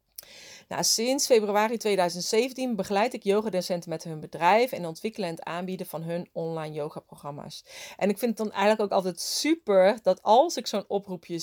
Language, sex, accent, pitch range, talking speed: Dutch, female, Dutch, 175-210 Hz, 175 wpm